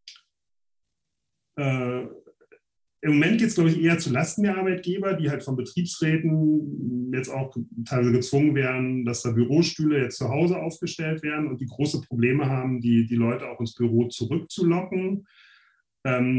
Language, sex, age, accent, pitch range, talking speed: German, male, 40-59, German, 120-150 Hz, 155 wpm